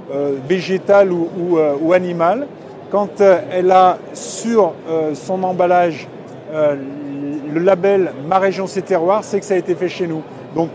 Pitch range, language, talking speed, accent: 160-195 Hz, French, 175 wpm, French